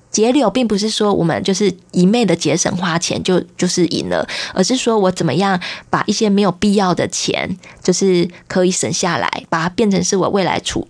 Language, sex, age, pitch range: Chinese, female, 20-39, 180-220 Hz